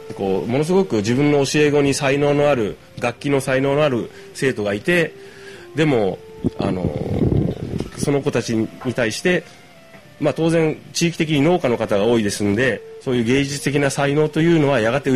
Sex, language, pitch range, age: male, Japanese, 125-170 Hz, 30-49